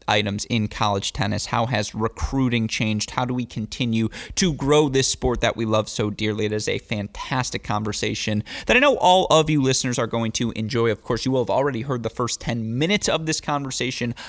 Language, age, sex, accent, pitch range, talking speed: English, 20-39, male, American, 105-130 Hz, 215 wpm